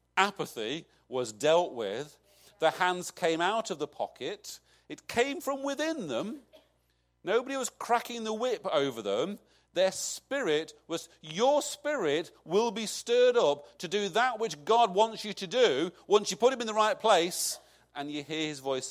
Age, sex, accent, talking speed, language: 40-59, male, British, 170 wpm, English